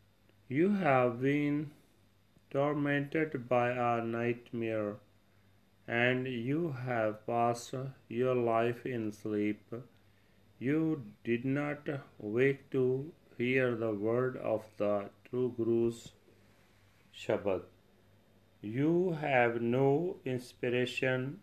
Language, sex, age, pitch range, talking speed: Punjabi, male, 40-59, 105-130 Hz, 90 wpm